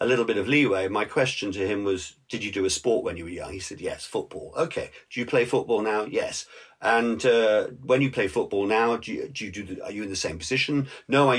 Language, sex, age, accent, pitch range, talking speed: English, male, 50-69, British, 115-160 Hz, 270 wpm